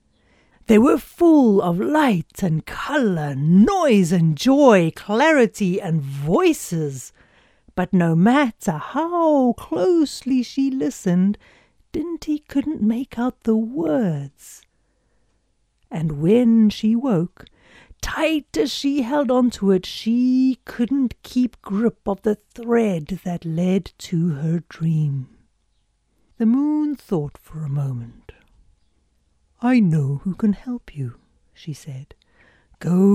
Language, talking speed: English, 115 wpm